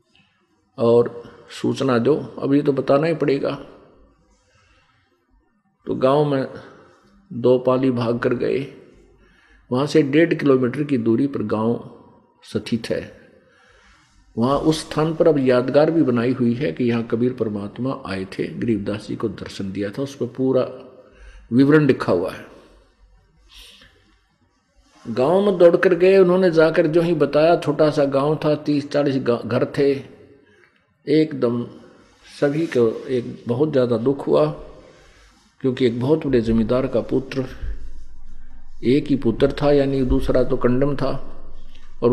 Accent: native